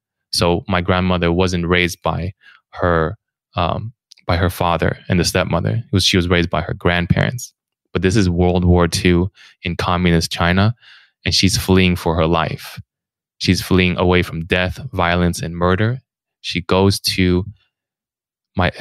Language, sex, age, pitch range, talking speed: English, male, 20-39, 85-100 Hz, 155 wpm